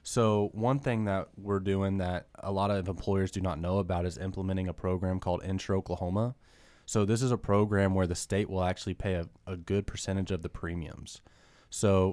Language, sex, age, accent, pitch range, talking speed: English, male, 20-39, American, 90-105 Hz, 205 wpm